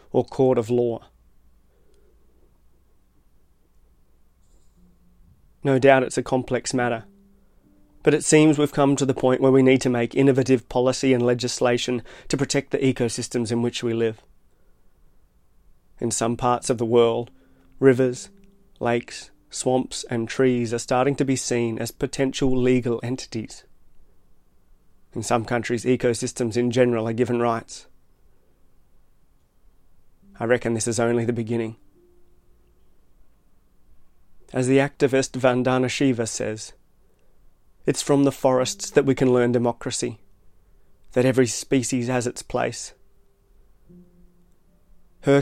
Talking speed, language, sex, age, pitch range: 125 wpm, English, male, 30-49, 110-130 Hz